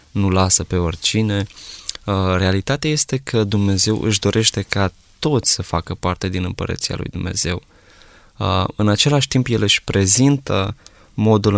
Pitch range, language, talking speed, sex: 95-115 Hz, Romanian, 135 wpm, male